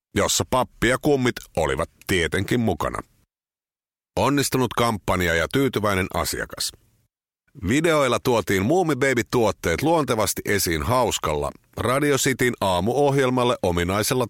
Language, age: Finnish, 50-69